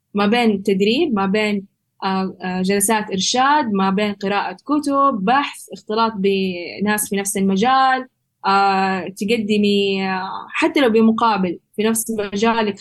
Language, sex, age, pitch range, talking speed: Arabic, female, 10-29, 195-240 Hz, 110 wpm